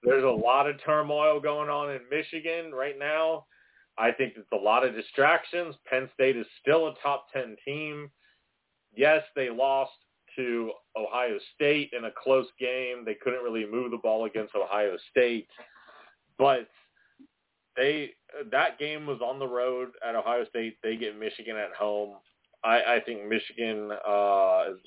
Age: 30-49